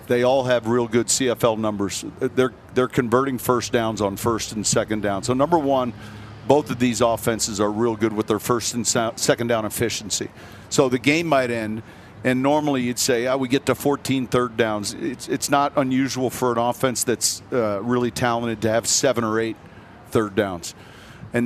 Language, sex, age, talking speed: English, male, 50-69, 195 wpm